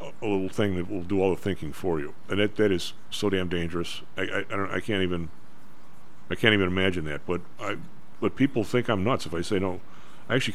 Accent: American